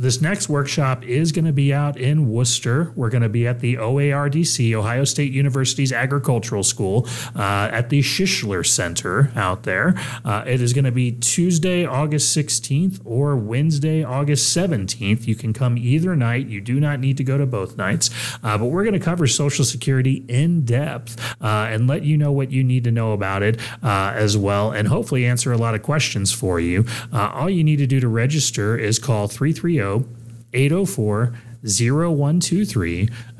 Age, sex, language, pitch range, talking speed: 30-49, male, English, 115-150 Hz, 185 wpm